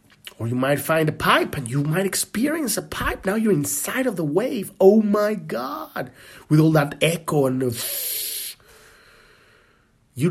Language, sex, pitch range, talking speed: English, male, 120-205 Hz, 155 wpm